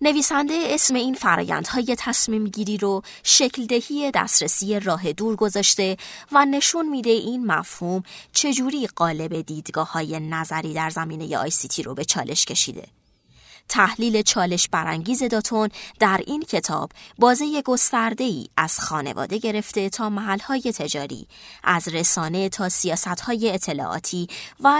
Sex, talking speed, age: female, 135 wpm, 30-49